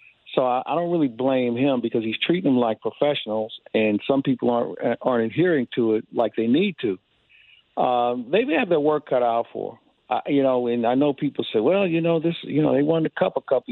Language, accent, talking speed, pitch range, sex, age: English, American, 235 wpm, 115-145 Hz, male, 50-69